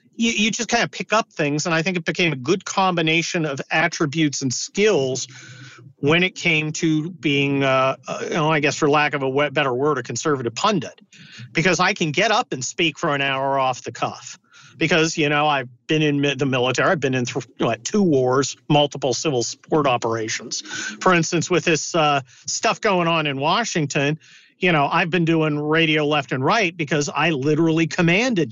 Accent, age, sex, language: American, 50-69, male, English